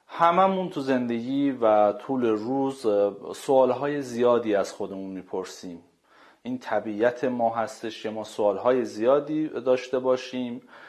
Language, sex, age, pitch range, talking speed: Persian, male, 40-59, 110-140 Hz, 125 wpm